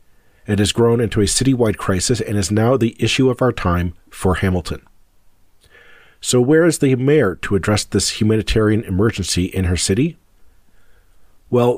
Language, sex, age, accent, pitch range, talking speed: English, male, 50-69, American, 95-115 Hz, 160 wpm